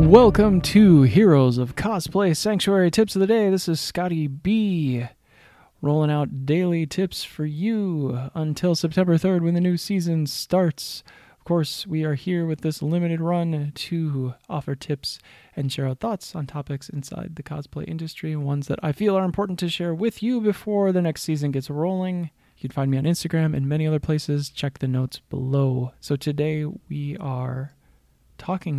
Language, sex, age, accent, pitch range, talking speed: English, male, 20-39, American, 135-170 Hz, 175 wpm